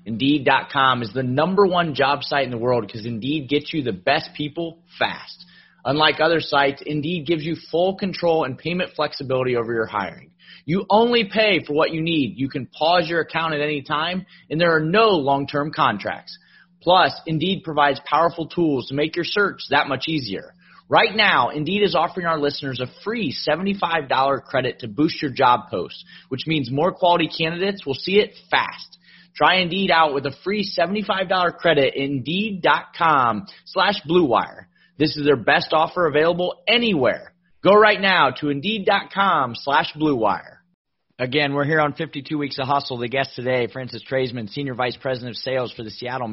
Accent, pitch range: American, 130-165 Hz